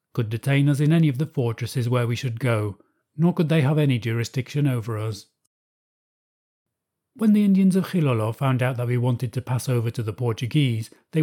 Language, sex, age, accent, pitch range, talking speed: English, male, 40-59, British, 125-155 Hz, 200 wpm